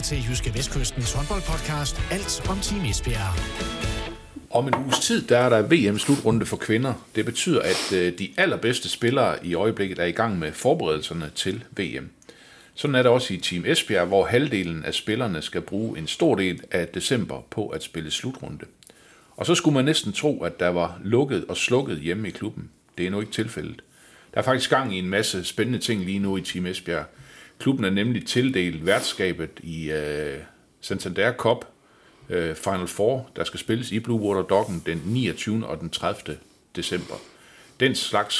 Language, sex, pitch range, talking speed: Danish, male, 90-120 Hz, 180 wpm